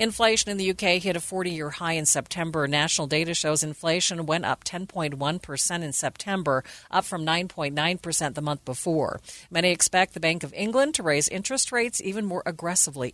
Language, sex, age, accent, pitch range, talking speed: English, female, 50-69, American, 155-195 Hz, 175 wpm